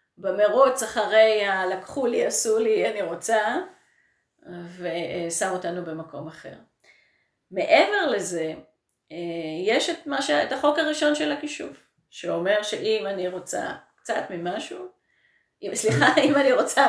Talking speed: 115 wpm